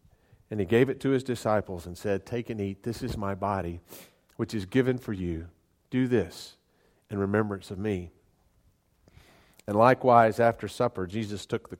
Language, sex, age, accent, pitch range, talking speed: English, male, 40-59, American, 90-115 Hz, 175 wpm